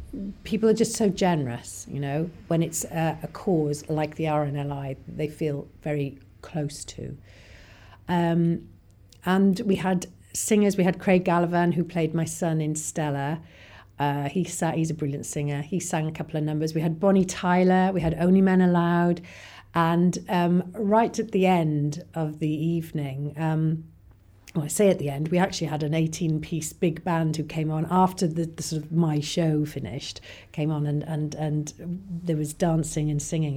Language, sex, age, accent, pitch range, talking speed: English, female, 50-69, British, 145-175 Hz, 180 wpm